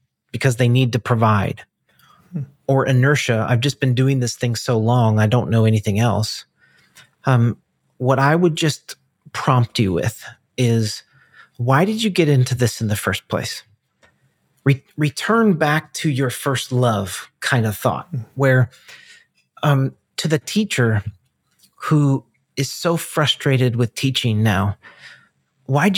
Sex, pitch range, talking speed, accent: male, 115-135 Hz, 140 wpm, American